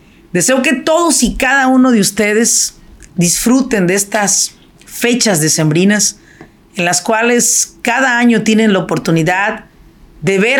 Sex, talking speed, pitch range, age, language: female, 130 wpm, 180-240 Hz, 40-59, Spanish